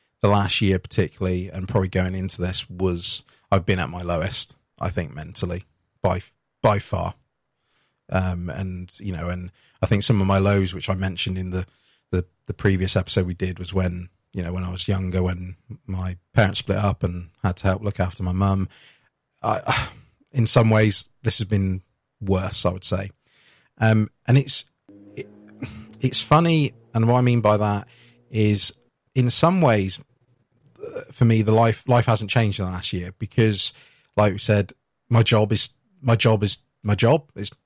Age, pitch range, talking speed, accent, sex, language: 20-39, 95-115 Hz, 185 wpm, British, male, English